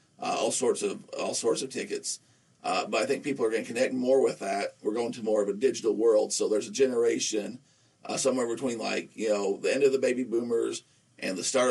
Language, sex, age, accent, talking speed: English, male, 50-69, American, 240 wpm